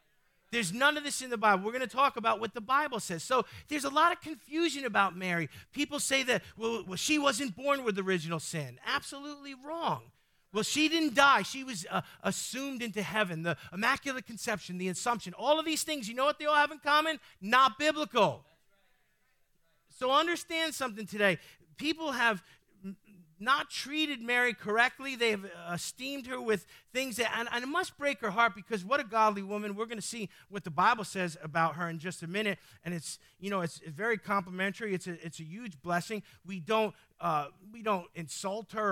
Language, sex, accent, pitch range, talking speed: English, male, American, 185-265 Hz, 200 wpm